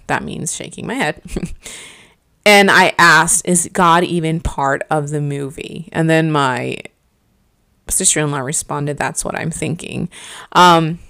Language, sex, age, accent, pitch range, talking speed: English, female, 20-39, American, 150-185 Hz, 135 wpm